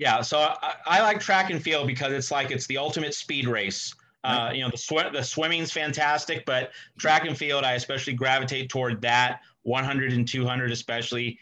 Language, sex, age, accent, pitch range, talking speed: English, male, 30-49, American, 135-165 Hz, 195 wpm